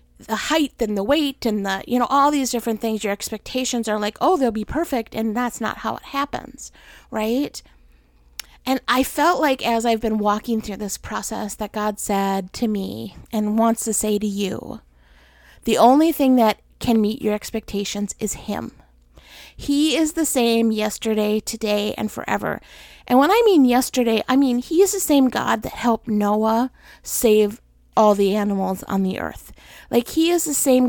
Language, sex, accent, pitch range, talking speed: English, female, American, 210-255 Hz, 185 wpm